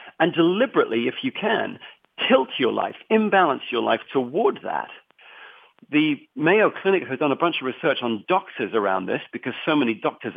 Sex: male